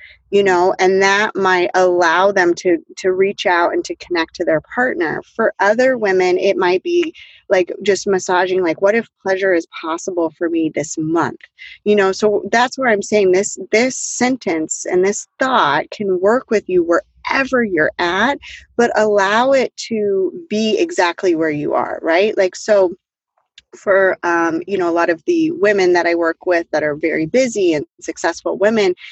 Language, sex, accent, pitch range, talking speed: English, female, American, 175-235 Hz, 180 wpm